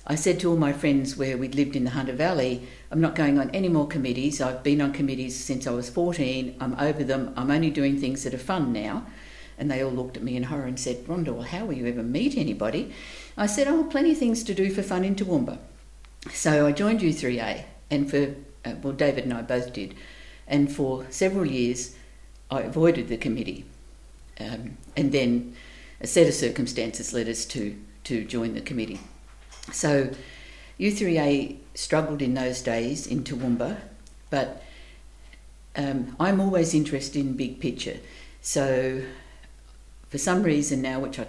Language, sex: English, female